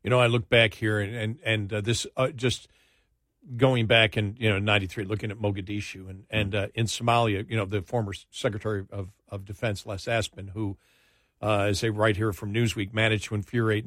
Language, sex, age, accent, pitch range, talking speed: English, male, 50-69, American, 100-115 Hz, 210 wpm